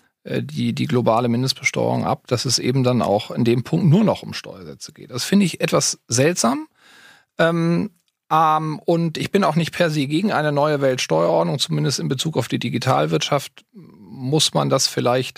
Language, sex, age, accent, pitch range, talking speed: German, male, 40-59, German, 130-165 Hz, 180 wpm